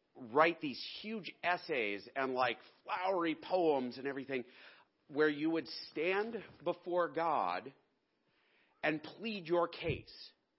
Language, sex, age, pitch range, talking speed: English, male, 40-59, 155-205 Hz, 115 wpm